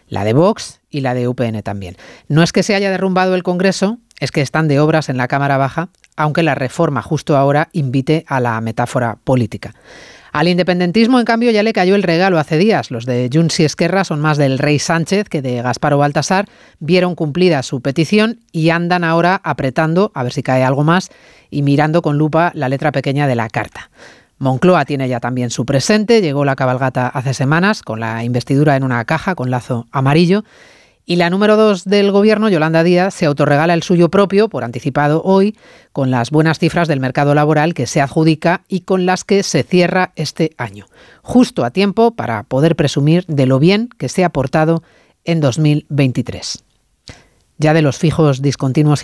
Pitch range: 135-180 Hz